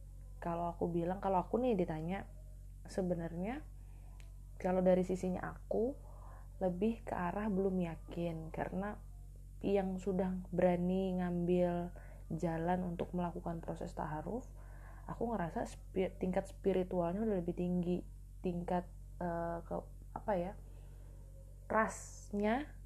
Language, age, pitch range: Indonesian, 20-39, 165-190 Hz